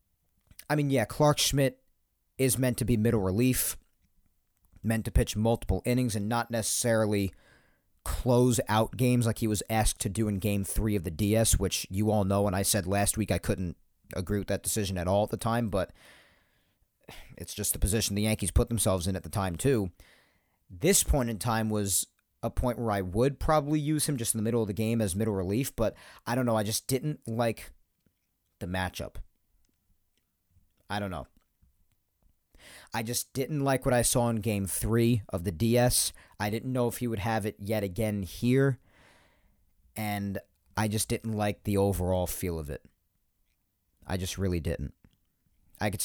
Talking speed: 190 wpm